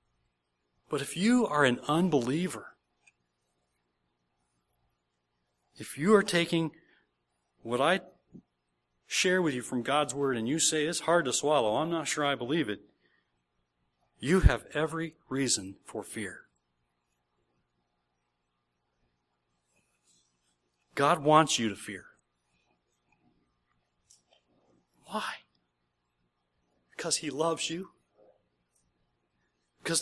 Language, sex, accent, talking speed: English, male, American, 95 wpm